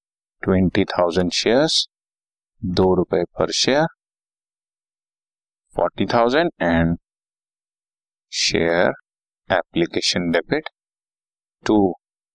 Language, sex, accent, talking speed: Hindi, male, native, 70 wpm